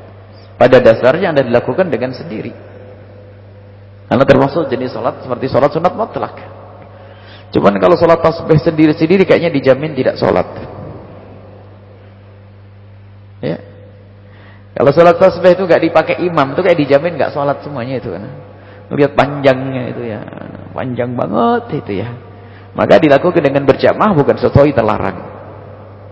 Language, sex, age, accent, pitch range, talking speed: English, male, 40-59, Indonesian, 100-145 Hz, 120 wpm